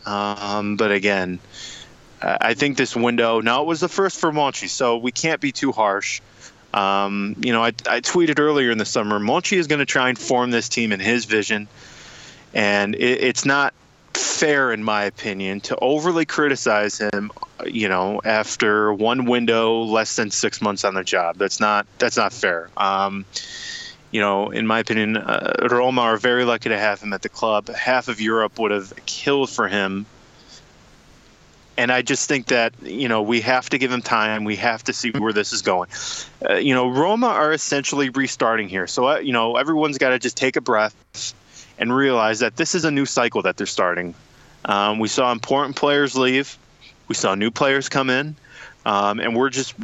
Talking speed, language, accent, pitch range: 195 wpm, English, American, 105-135 Hz